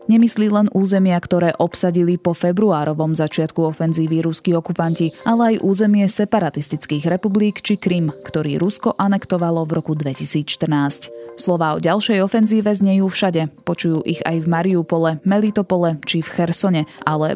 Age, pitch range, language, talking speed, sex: 20-39, 160-200 Hz, Slovak, 140 wpm, female